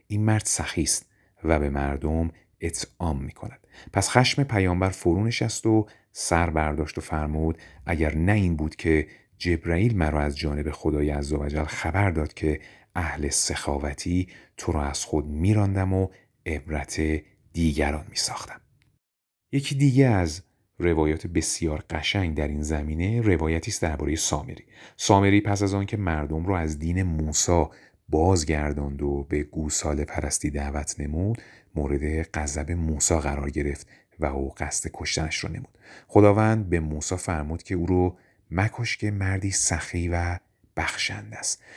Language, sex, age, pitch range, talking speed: Persian, male, 30-49, 75-100 Hz, 140 wpm